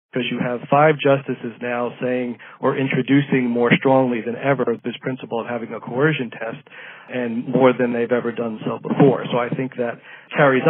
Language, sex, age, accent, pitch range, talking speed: English, male, 40-59, American, 125-150 Hz, 185 wpm